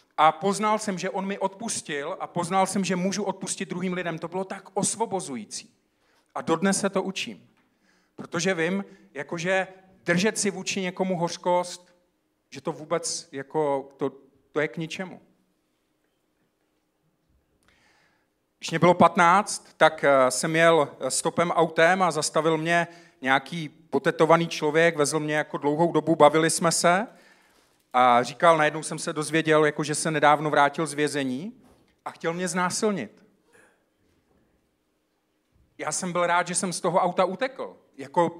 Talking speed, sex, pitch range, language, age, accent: 145 wpm, male, 160-195 Hz, Czech, 40-59, native